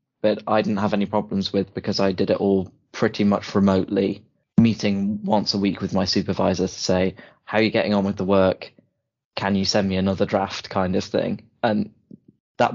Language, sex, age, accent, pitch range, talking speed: English, male, 20-39, British, 95-110 Hz, 200 wpm